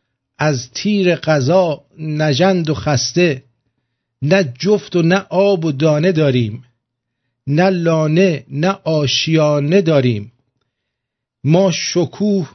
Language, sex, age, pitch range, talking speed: English, male, 50-69, 125-175 Hz, 100 wpm